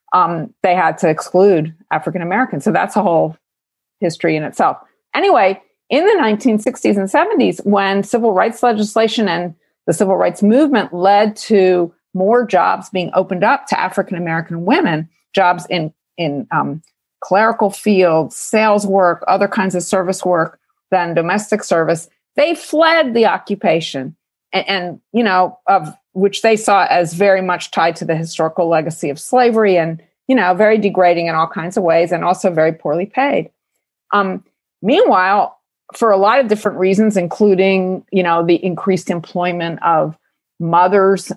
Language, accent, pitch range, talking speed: English, American, 170-210 Hz, 155 wpm